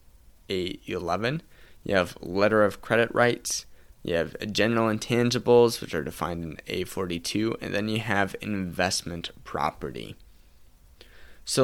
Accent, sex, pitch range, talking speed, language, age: American, male, 85-110 Hz, 120 wpm, English, 10-29